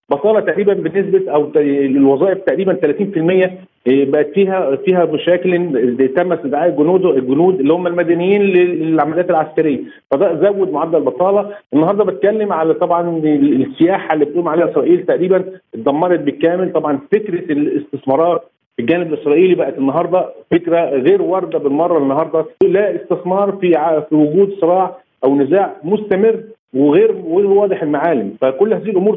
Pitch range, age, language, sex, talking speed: 155-200 Hz, 50-69, Arabic, male, 135 wpm